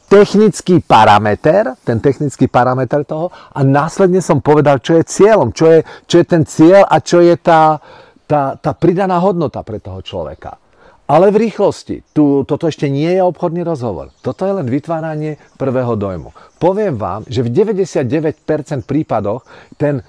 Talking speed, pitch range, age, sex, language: 150 wpm, 120-170 Hz, 40-59, male, Czech